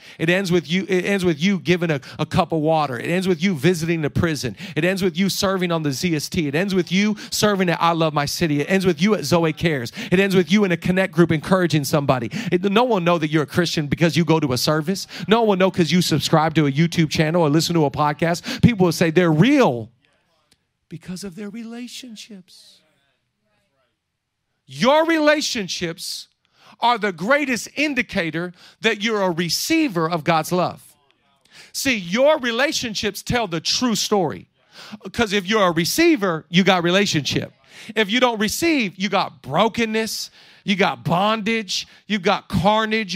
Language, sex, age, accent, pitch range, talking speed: English, male, 40-59, American, 165-215 Hz, 190 wpm